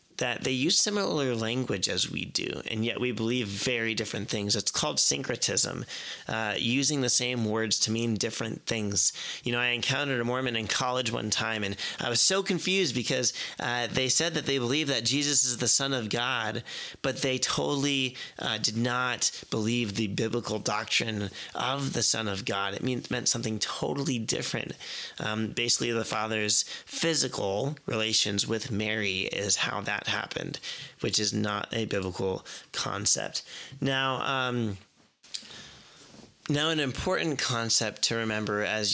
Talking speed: 160 wpm